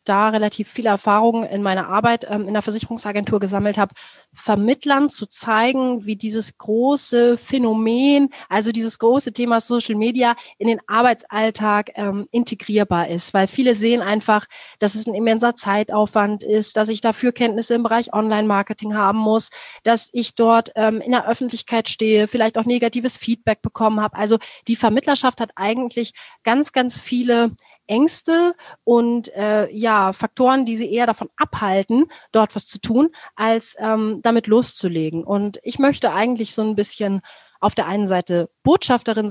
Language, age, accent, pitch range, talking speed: German, 30-49, German, 215-240 Hz, 155 wpm